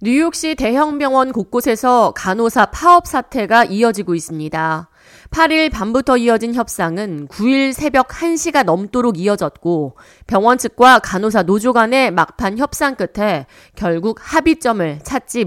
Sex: female